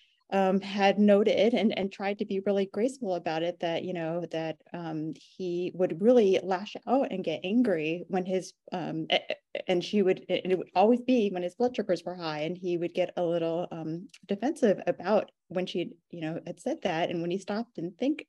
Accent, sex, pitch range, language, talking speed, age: American, female, 175-210 Hz, English, 210 wpm, 30-49